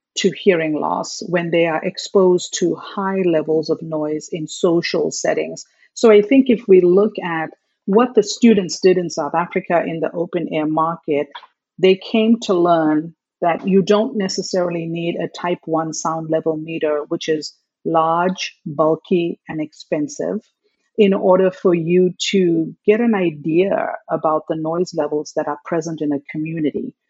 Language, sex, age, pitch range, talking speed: English, female, 50-69, 160-195 Hz, 160 wpm